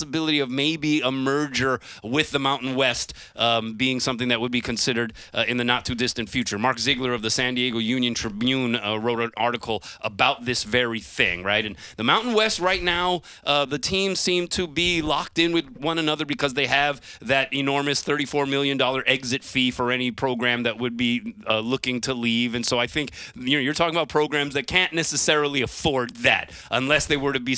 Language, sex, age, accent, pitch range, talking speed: English, male, 30-49, American, 120-145 Hz, 200 wpm